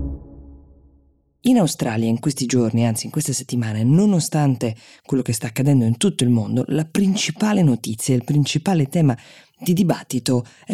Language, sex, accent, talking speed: Italian, female, native, 150 wpm